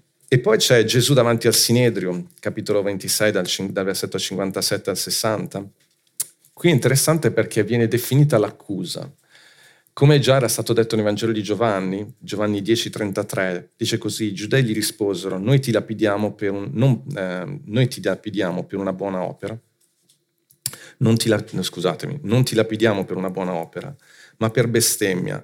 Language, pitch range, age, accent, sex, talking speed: Italian, 100-120 Hz, 40-59, native, male, 160 wpm